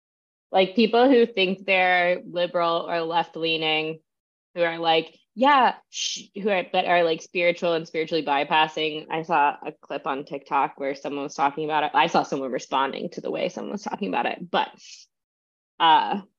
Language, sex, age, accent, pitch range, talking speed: English, female, 20-39, American, 165-225 Hz, 180 wpm